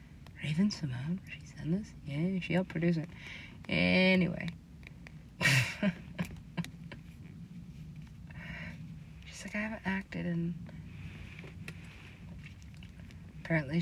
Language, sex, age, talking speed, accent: English, female, 30-49, 80 wpm, American